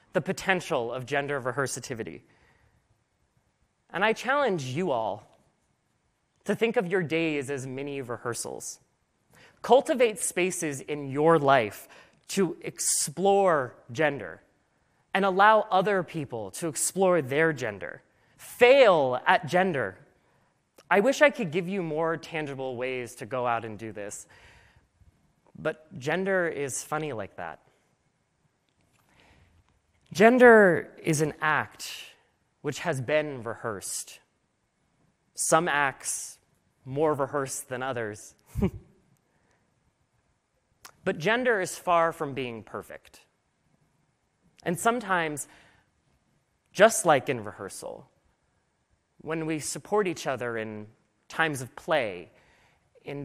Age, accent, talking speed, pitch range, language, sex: 30-49, American, 105 wpm, 130-185 Hz, Spanish, male